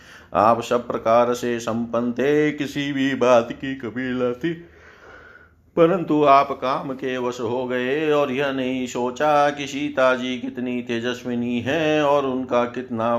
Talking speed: 140 wpm